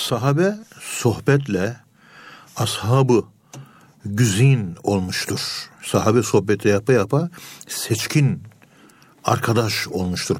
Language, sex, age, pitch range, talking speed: Turkish, male, 60-79, 105-140 Hz, 70 wpm